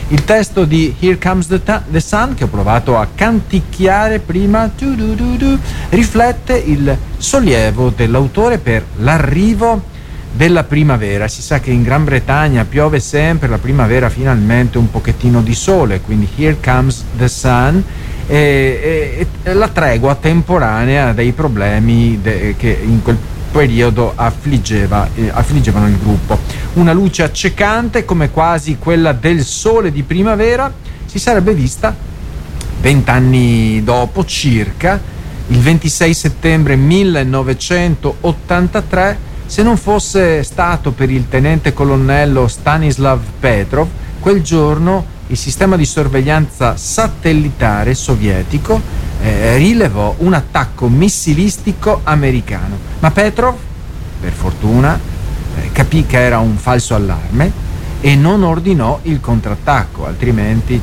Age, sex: 50-69, male